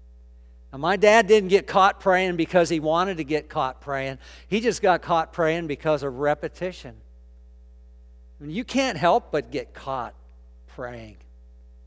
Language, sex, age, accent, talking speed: English, male, 50-69, American, 150 wpm